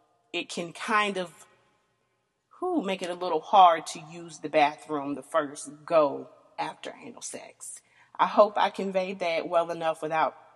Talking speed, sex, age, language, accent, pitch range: 160 wpm, female, 30-49, English, American, 145-185 Hz